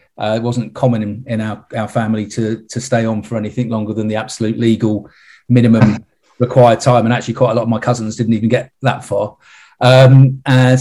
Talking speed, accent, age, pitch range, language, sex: 210 wpm, British, 40-59, 110-125 Hz, English, male